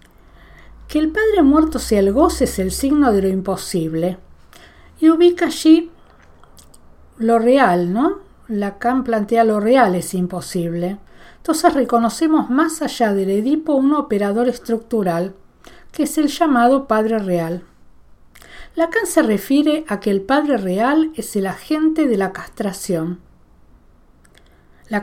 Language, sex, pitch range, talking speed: Spanish, female, 185-275 Hz, 130 wpm